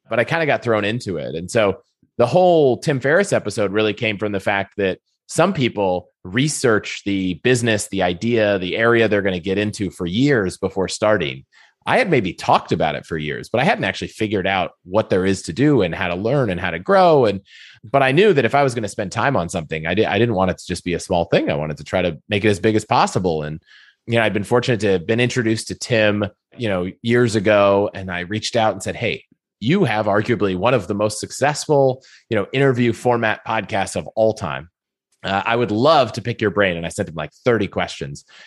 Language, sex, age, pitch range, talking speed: English, male, 30-49, 95-125 Hz, 245 wpm